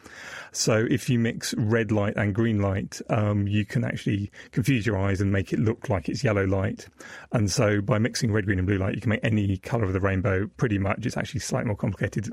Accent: British